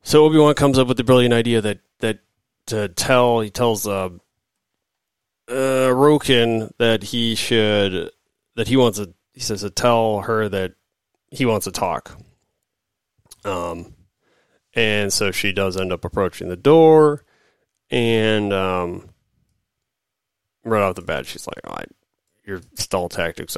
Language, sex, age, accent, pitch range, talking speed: English, male, 30-49, American, 95-120 Hz, 150 wpm